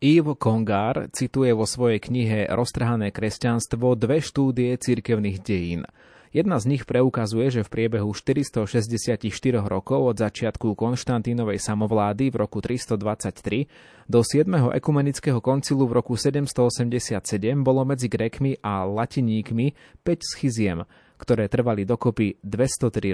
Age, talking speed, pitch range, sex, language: 20-39, 120 wpm, 110-130 Hz, male, Slovak